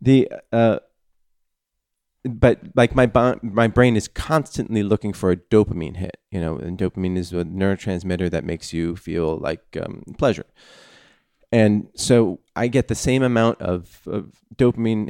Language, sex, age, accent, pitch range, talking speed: English, male, 30-49, American, 90-110 Hz, 155 wpm